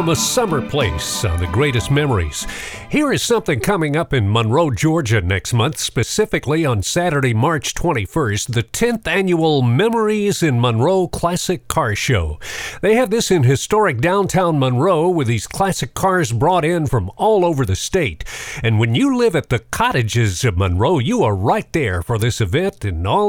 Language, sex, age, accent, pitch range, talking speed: English, male, 50-69, American, 115-180 Hz, 175 wpm